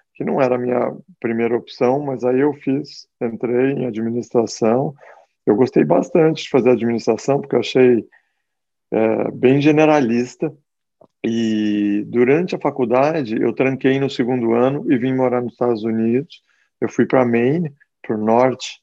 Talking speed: 155 wpm